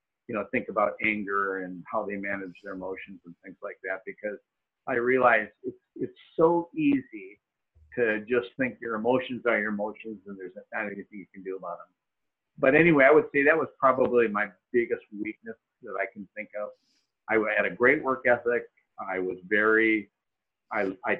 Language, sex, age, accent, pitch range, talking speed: English, male, 50-69, American, 100-130 Hz, 185 wpm